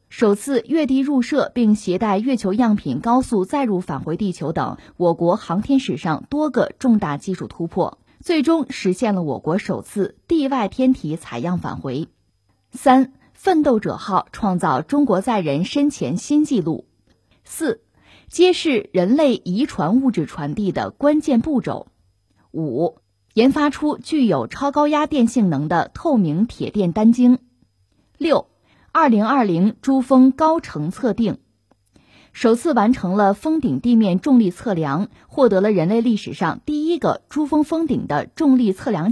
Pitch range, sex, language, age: 180-275 Hz, female, Chinese, 20-39